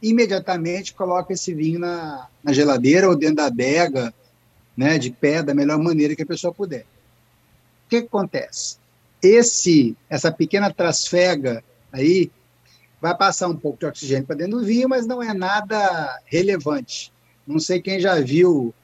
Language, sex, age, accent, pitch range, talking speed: Portuguese, male, 60-79, Brazilian, 140-180 Hz, 160 wpm